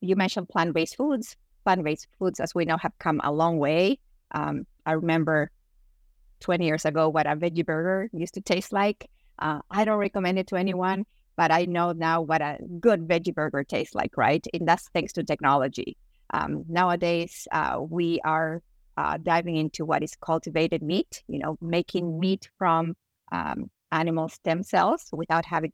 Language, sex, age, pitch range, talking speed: English, female, 30-49, 160-185 Hz, 175 wpm